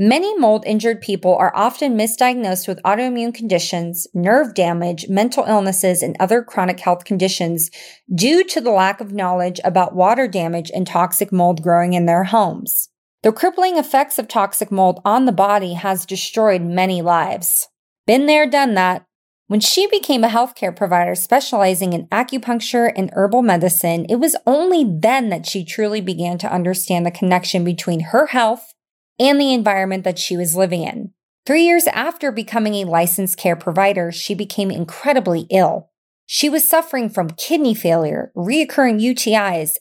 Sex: female